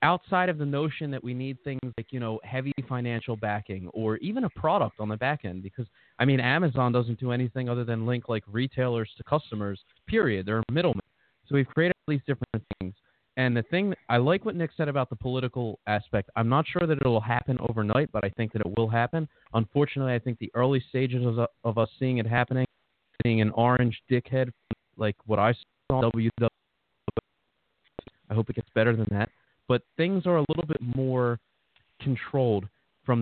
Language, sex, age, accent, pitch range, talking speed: English, male, 30-49, American, 110-135 Hz, 200 wpm